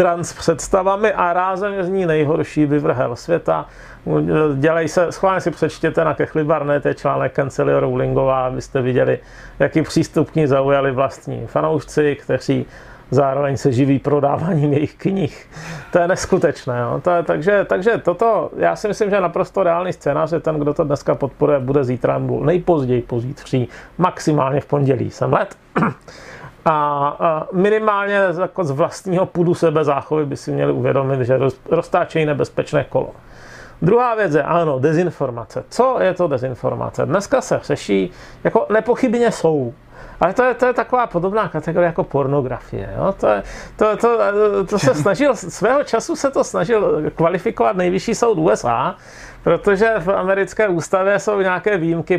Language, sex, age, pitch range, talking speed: Czech, male, 40-59, 140-185 Hz, 150 wpm